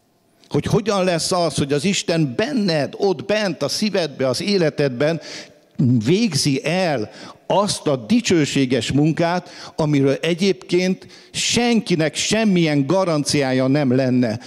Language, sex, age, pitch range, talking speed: English, male, 50-69, 130-180 Hz, 110 wpm